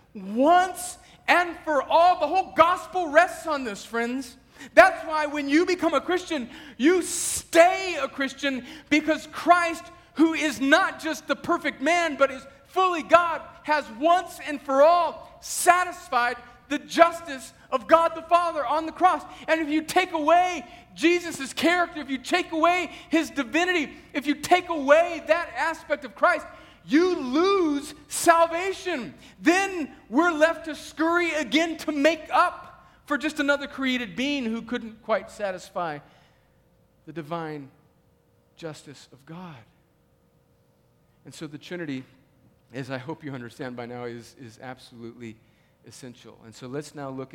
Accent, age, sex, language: American, 40-59, male, English